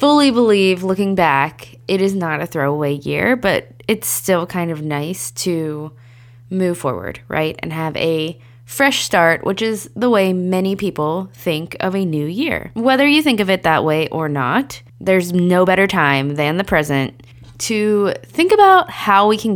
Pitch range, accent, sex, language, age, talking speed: 150-195 Hz, American, female, English, 20-39, 180 wpm